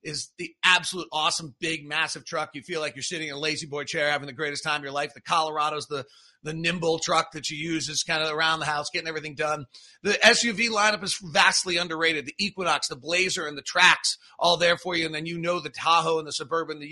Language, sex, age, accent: English, male, 40-59, American